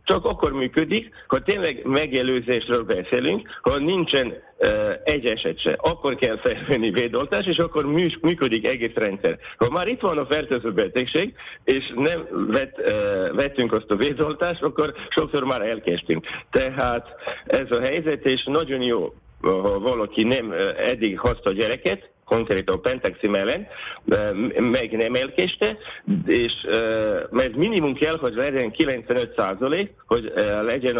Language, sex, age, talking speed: Hungarian, male, 50-69, 140 wpm